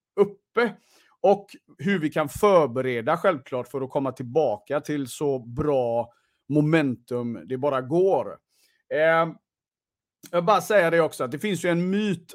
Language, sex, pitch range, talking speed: Swedish, male, 125-185 Hz, 150 wpm